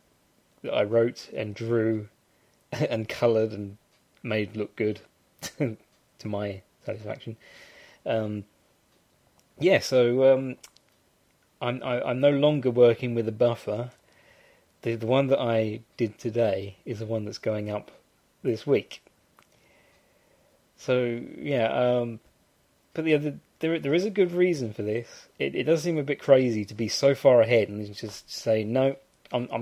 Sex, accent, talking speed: male, British, 150 wpm